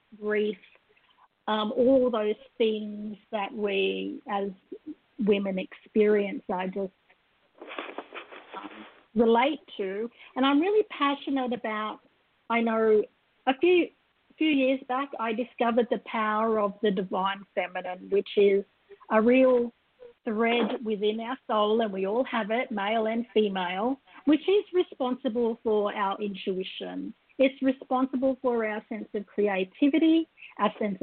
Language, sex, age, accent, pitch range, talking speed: English, female, 50-69, Australian, 210-255 Hz, 130 wpm